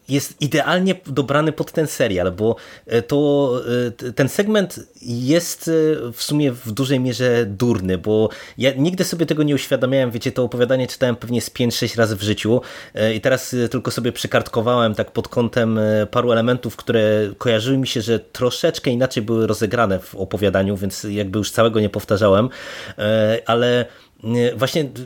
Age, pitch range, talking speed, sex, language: 20-39, 110-135 Hz, 155 wpm, male, Polish